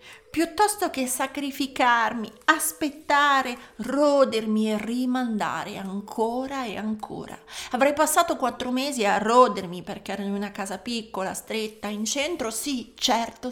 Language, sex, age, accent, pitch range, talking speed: Italian, female, 40-59, native, 205-275 Hz, 120 wpm